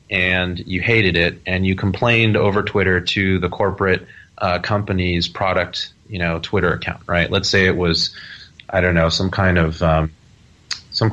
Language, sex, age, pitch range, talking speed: English, male, 30-49, 90-110 Hz, 175 wpm